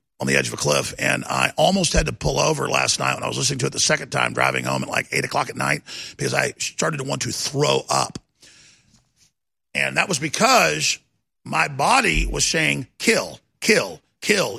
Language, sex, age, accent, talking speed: English, male, 50-69, American, 210 wpm